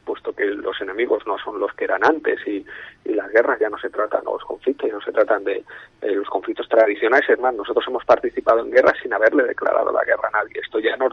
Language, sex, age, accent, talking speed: Spanish, male, 30-49, Spanish, 250 wpm